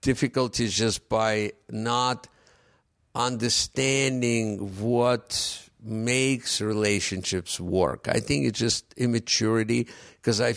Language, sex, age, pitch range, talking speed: English, male, 50-69, 100-115 Hz, 90 wpm